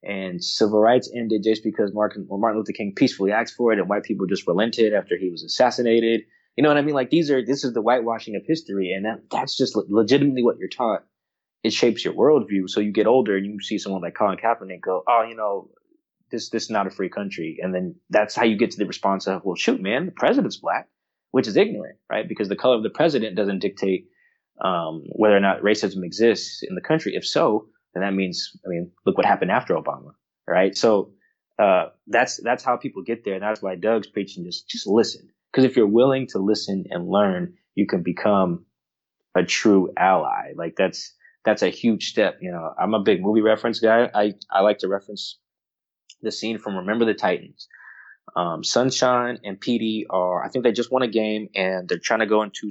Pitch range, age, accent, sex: 95-115 Hz, 20-39, American, male